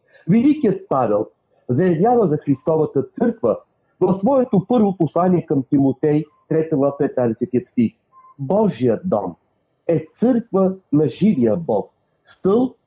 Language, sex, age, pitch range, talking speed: Bulgarian, male, 50-69, 140-195 Hz, 100 wpm